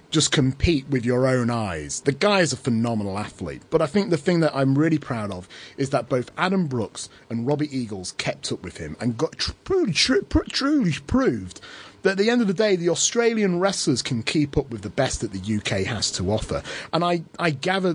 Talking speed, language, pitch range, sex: 215 wpm, English, 100-150 Hz, male